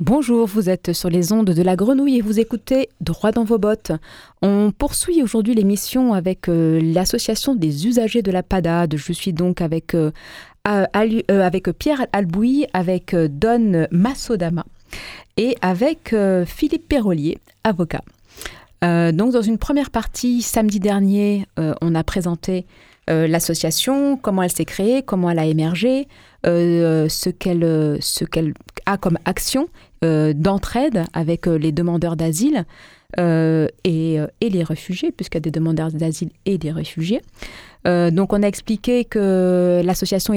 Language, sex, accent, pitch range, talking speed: French, female, French, 165-220 Hz, 155 wpm